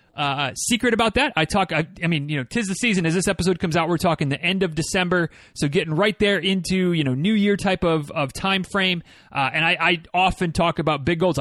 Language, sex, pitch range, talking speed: English, male, 160-200 Hz, 250 wpm